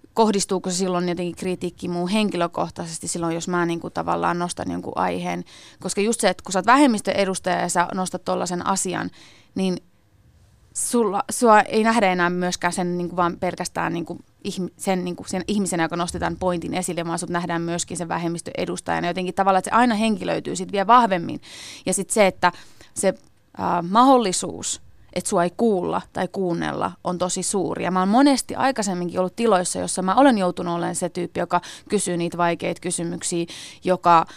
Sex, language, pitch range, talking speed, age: female, Finnish, 170-195 Hz, 170 wpm, 30-49